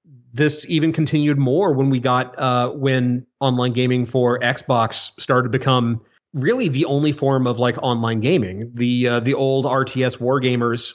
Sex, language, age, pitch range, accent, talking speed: male, English, 30-49, 125-140 Hz, American, 170 wpm